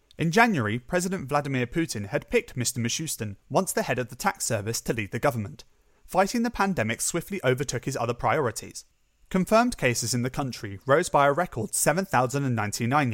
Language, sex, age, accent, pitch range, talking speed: English, male, 30-49, British, 110-170 Hz, 175 wpm